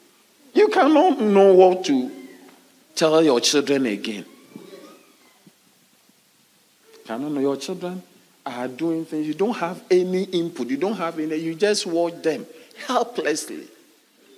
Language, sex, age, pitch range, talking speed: English, male, 50-69, 155-245 Hz, 130 wpm